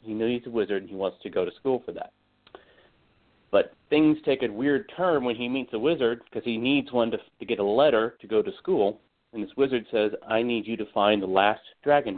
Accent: American